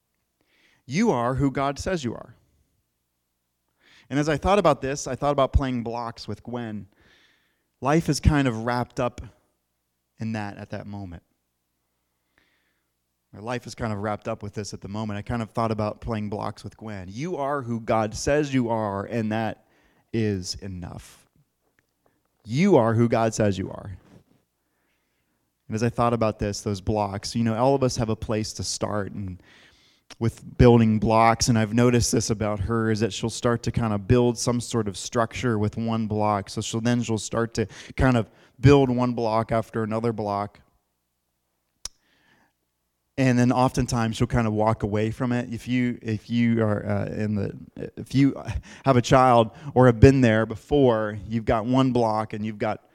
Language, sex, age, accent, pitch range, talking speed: English, male, 30-49, American, 100-120 Hz, 185 wpm